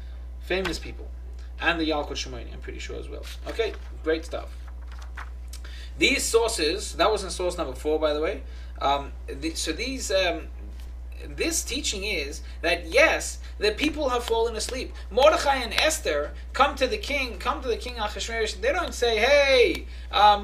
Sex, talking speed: male, 165 wpm